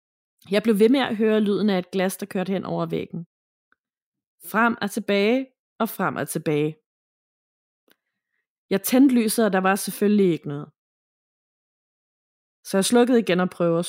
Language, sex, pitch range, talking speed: Danish, female, 180-225 Hz, 165 wpm